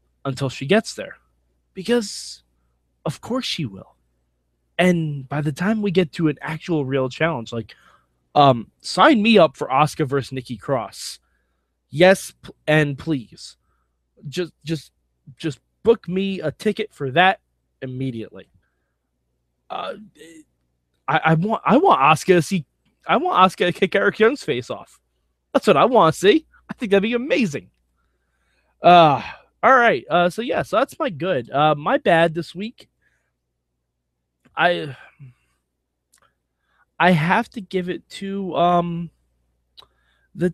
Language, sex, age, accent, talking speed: English, male, 20-39, American, 140 wpm